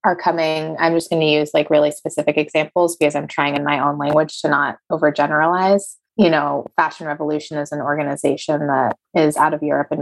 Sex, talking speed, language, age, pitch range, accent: female, 205 wpm, English, 20-39, 150-170 Hz, American